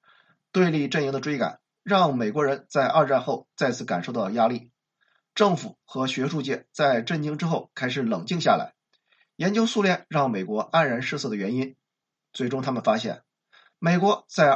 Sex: male